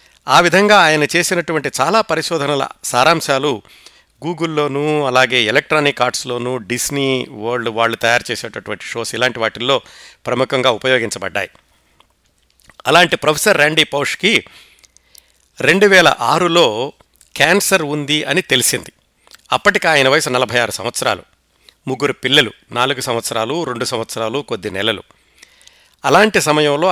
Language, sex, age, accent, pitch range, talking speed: Telugu, male, 60-79, native, 120-155 Hz, 105 wpm